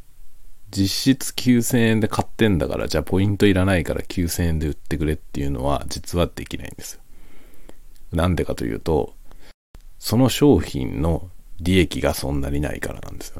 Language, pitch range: Japanese, 80-110 Hz